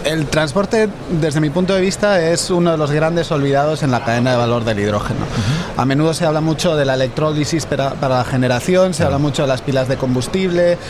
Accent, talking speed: Spanish, 215 wpm